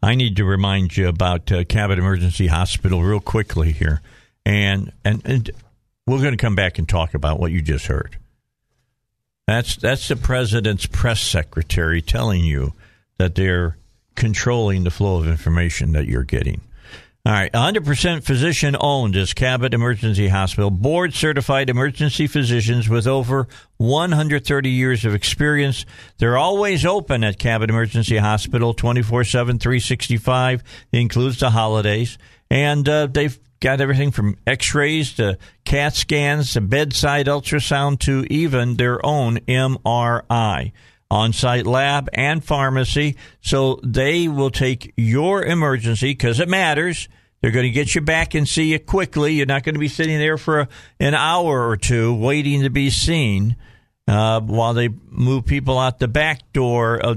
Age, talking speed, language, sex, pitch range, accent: 50-69, 155 wpm, English, male, 105-135 Hz, American